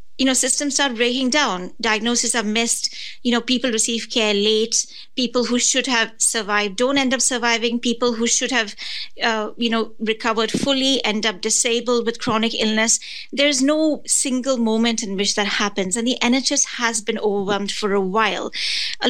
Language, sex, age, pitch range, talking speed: English, female, 30-49, 210-245 Hz, 180 wpm